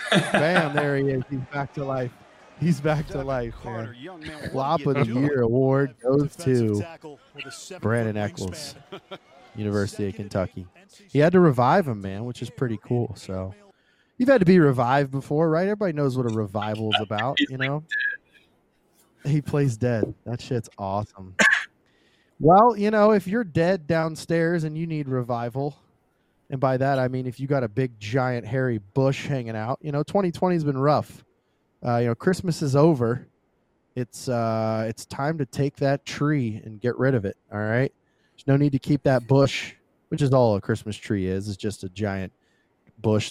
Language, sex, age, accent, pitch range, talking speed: English, male, 20-39, American, 110-145 Hz, 180 wpm